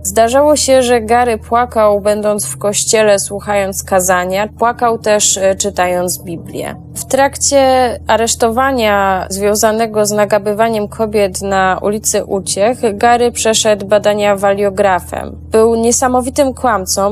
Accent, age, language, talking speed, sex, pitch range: native, 20-39, Polish, 110 wpm, female, 200-235 Hz